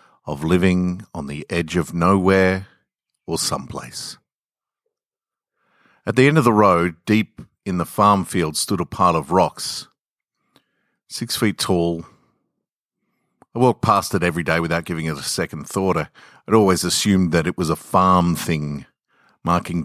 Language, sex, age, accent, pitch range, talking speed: English, male, 50-69, Australian, 80-100 Hz, 150 wpm